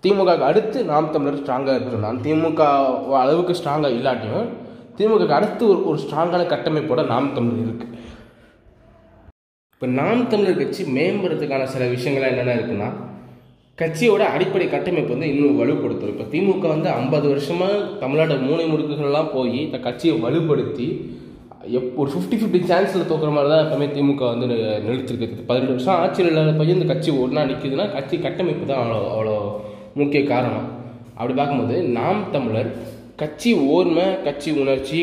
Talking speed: 140 wpm